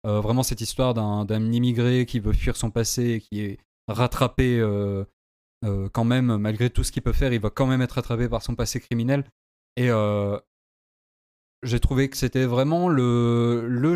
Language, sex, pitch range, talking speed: French, male, 105-125 Hz, 195 wpm